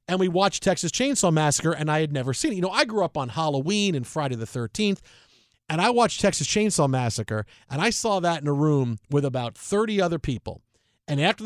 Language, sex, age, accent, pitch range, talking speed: English, male, 40-59, American, 140-180 Hz, 225 wpm